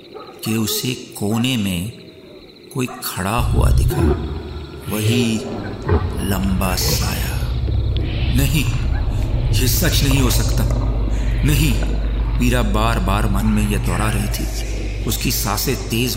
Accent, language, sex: native, Hindi, male